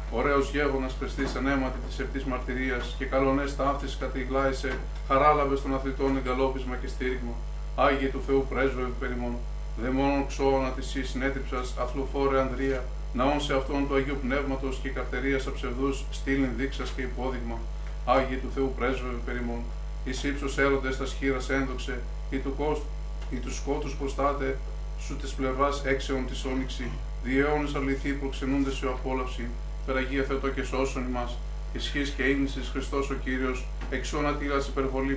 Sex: male